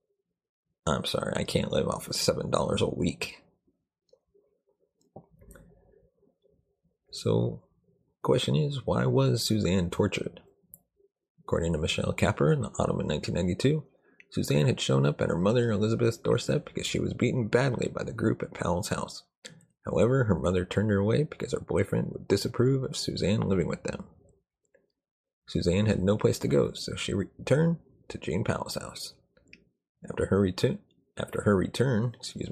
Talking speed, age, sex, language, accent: 155 wpm, 30-49, male, English, American